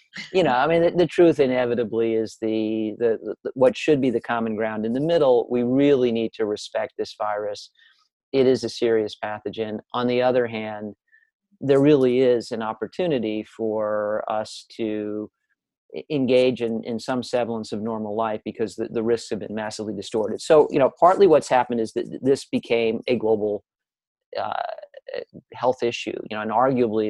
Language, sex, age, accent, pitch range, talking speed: English, male, 50-69, American, 110-140 Hz, 175 wpm